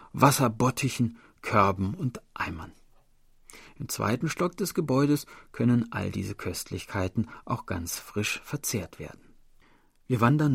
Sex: male